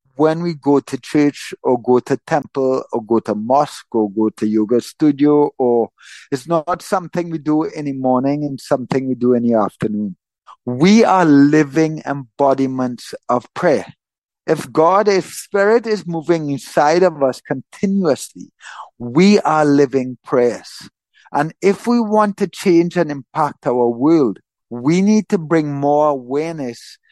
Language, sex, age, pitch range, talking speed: English, male, 50-69, 140-185 Hz, 155 wpm